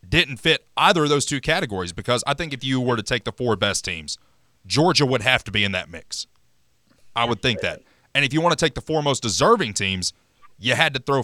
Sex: male